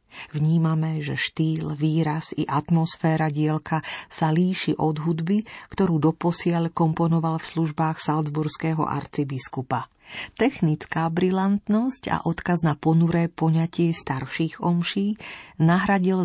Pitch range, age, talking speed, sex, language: 155-185 Hz, 40-59, 105 wpm, female, Slovak